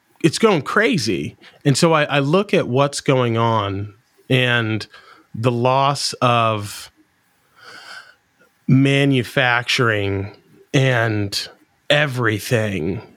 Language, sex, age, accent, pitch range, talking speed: English, male, 30-49, American, 120-145 Hz, 85 wpm